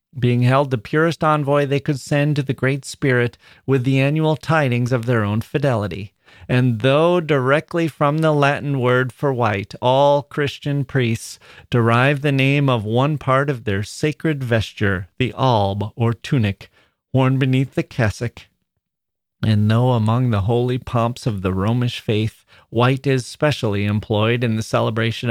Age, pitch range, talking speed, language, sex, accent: 40-59, 115-145 Hz, 160 wpm, English, male, American